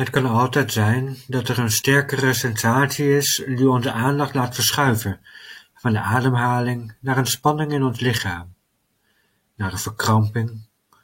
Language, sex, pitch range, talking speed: Dutch, male, 105-130 Hz, 145 wpm